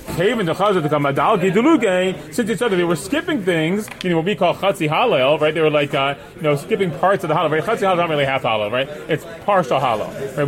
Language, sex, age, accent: English, male, 30-49, American